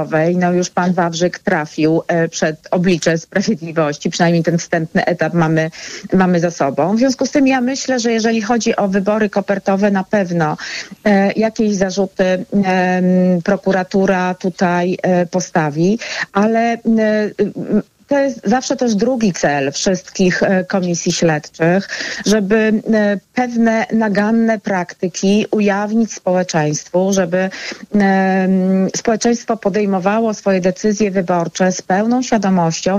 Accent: native